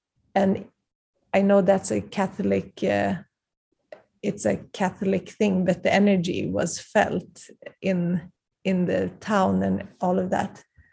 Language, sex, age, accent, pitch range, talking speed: English, female, 30-49, Swedish, 180-200 Hz, 130 wpm